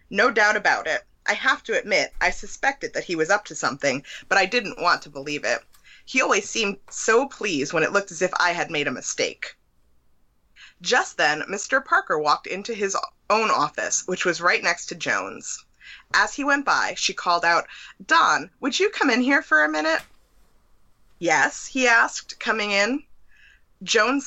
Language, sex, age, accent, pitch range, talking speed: English, female, 20-39, American, 160-245 Hz, 185 wpm